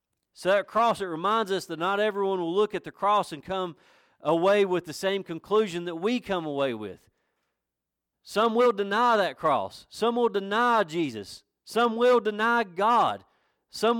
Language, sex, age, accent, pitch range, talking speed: English, male, 40-59, American, 155-210 Hz, 170 wpm